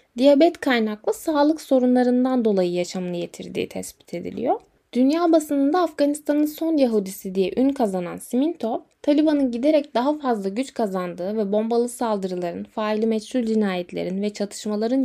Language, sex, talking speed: Turkish, female, 130 wpm